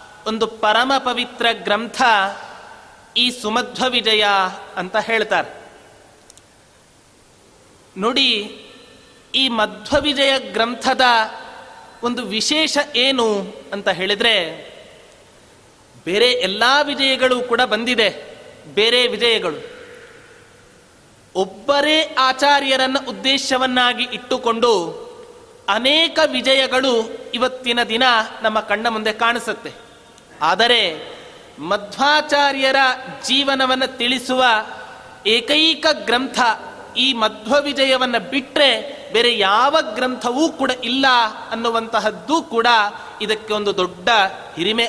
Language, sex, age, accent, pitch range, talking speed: Kannada, male, 30-49, native, 220-275 Hz, 65 wpm